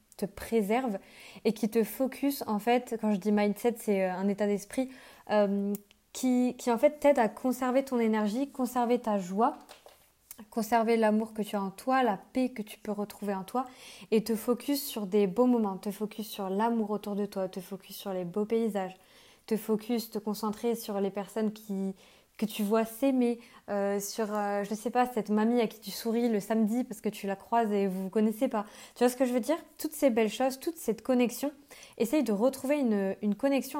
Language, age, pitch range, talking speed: French, 20-39, 205-245 Hz, 215 wpm